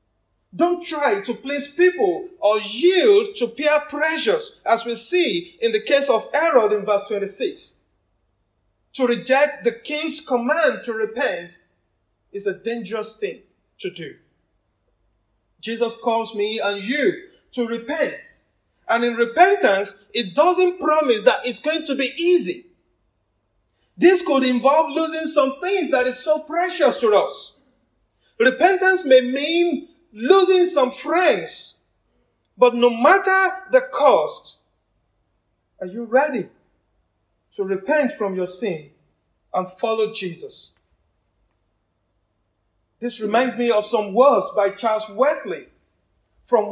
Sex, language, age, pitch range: male, English, 50-69, 205-325 Hz